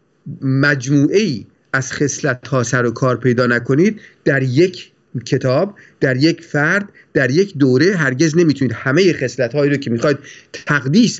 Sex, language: male, Persian